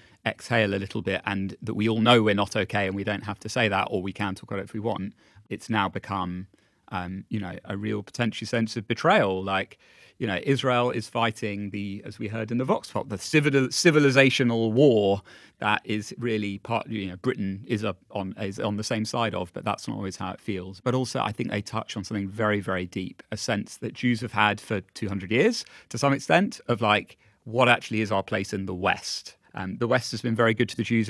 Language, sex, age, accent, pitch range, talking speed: English, male, 30-49, British, 100-115 Hz, 235 wpm